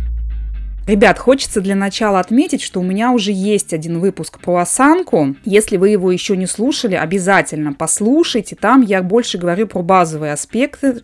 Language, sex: Russian, female